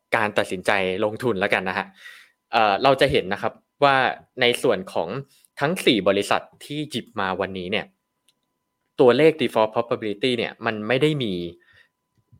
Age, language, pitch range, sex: 20-39, Thai, 100-125 Hz, male